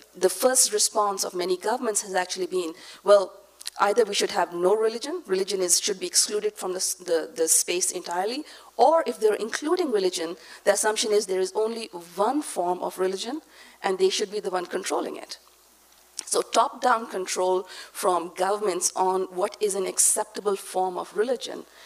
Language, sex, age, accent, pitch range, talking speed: English, female, 50-69, Indian, 185-255 Hz, 165 wpm